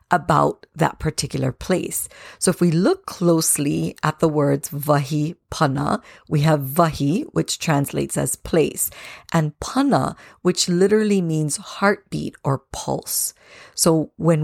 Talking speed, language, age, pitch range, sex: 130 wpm, English, 50-69, 145-185 Hz, female